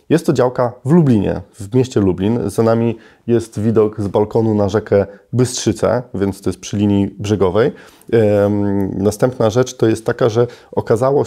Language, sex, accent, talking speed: Polish, male, native, 165 wpm